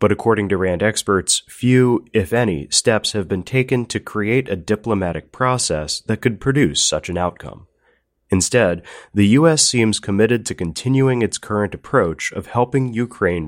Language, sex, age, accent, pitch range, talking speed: English, male, 30-49, American, 90-120 Hz, 160 wpm